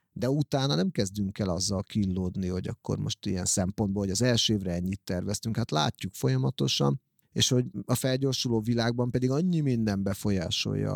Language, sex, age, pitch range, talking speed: Hungarian, male, 30-49, 100-125 Hz, 165 wpm